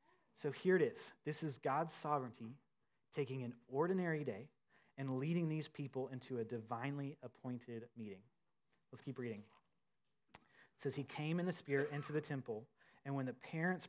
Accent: American